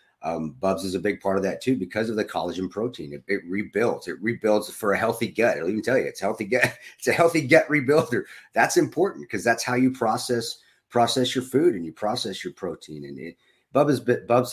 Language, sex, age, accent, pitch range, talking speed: English, male, 40-59, American, 95-125 Hz, 220 wpm